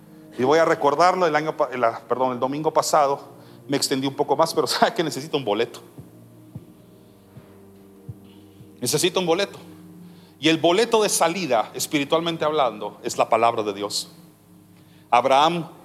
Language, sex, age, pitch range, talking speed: Spanish, male, 40-59, 105-155 Hz, 145 wpm